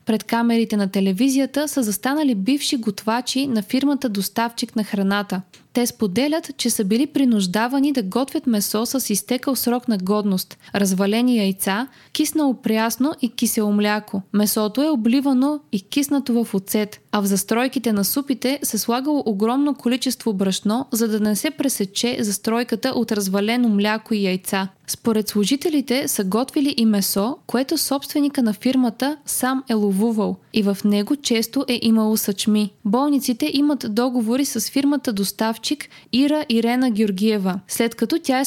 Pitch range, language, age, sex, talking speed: 210-265 Hz, Bulgarian, 20-39, female, 150 wpm